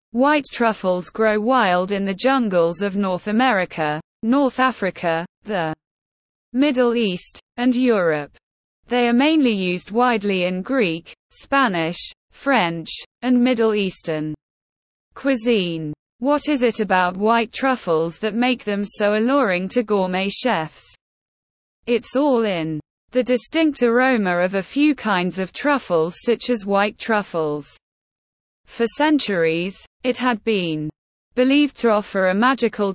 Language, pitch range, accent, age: English, 180-250 Hz, British, 20-39